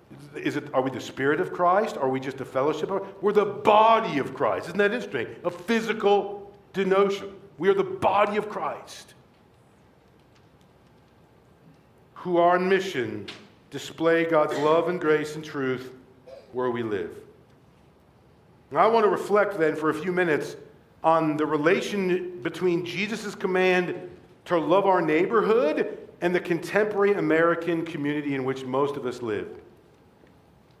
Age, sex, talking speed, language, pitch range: 50-69, male, 145 wpm, English, 155-225 Hz